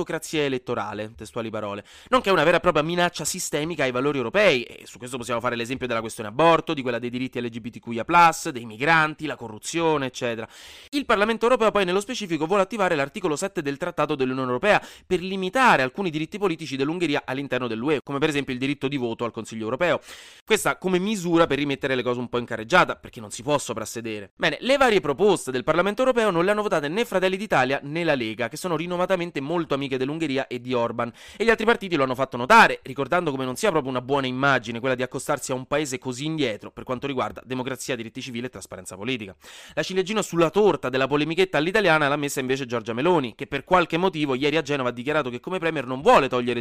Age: 30-49